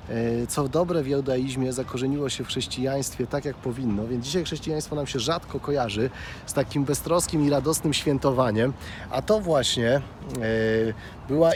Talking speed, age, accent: 145 wpm, 40-59, native